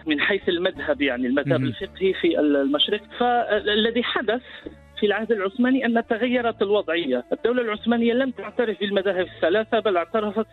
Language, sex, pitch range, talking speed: Arabic, male, 160-215 Hz, 135 wpm